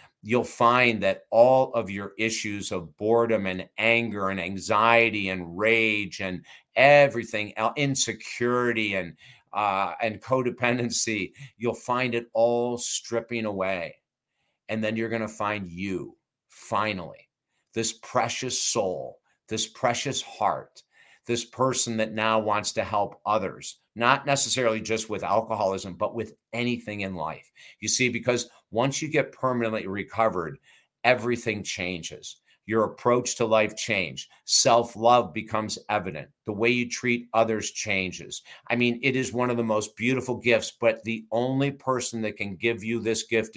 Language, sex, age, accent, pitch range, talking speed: English, male, 50-69, American, 110-120 Hz, 145 wpm